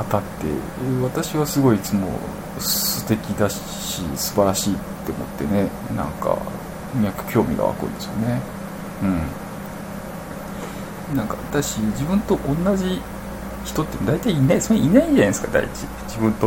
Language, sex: Japanese, male